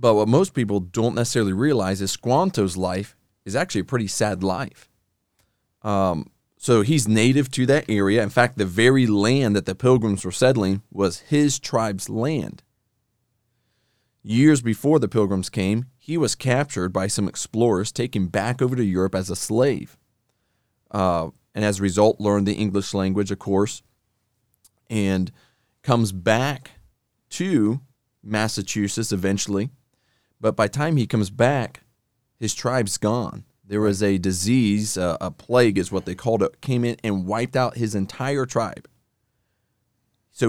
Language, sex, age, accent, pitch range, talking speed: English, male, 30-49, American, 100-125 Hz, 155 wpm